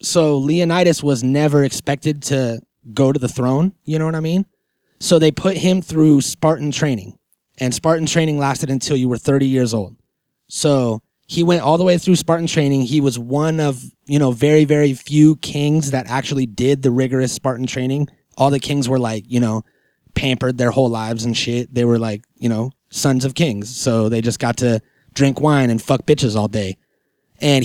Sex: male